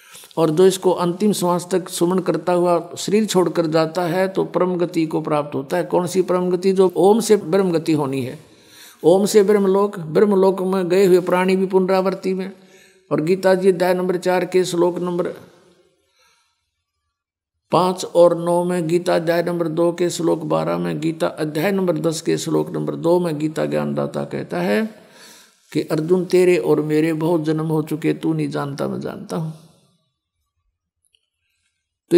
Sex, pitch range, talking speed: male, 155-195 Hz, 170 wpm